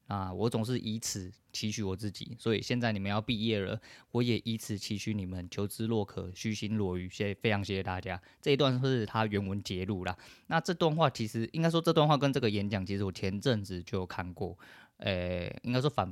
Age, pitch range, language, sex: 20-39, 95-115 Hz, Chinese, male